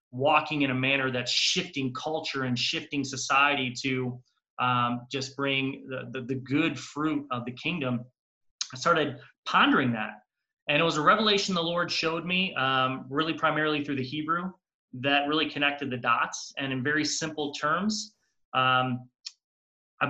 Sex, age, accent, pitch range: male, 30-49, American, 130-150 Hz